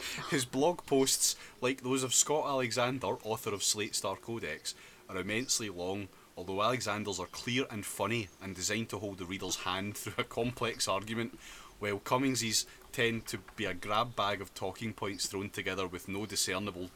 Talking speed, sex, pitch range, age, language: 175 wpm, male, 90-115 Hz, 30-49, English